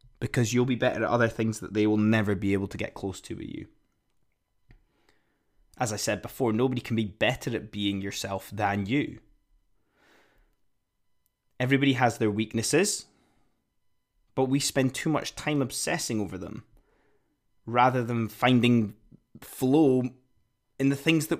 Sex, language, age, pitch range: male, English, 20-39, 105-135 Hz